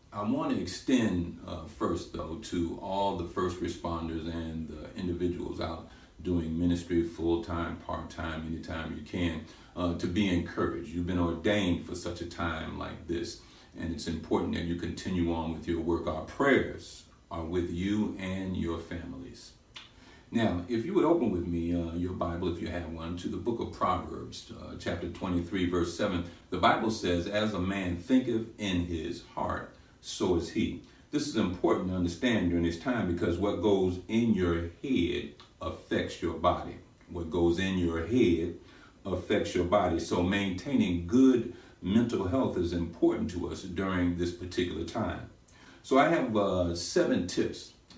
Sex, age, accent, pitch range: male, 50-69, American, 85-95 Hz